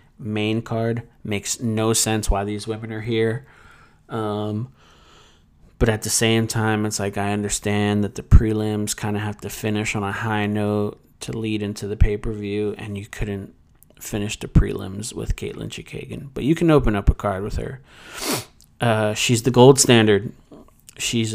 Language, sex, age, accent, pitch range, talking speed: English, male, 30-49, American, 100-115 Hz, 170 wpm